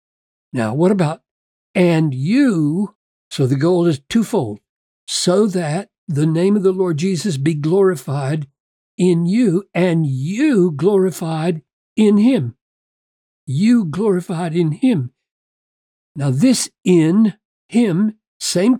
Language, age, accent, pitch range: English, 60-79, American, 160-210 Hz